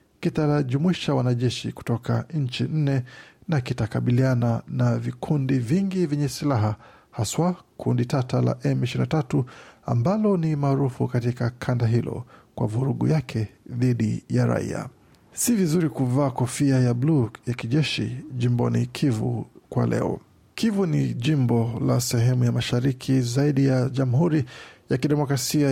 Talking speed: 125 wpm